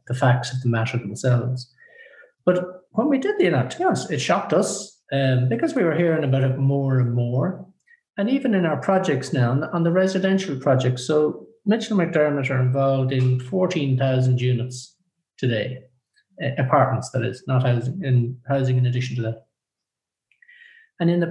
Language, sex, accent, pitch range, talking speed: English, male, Irish, 125-170 Hz, 175 wpm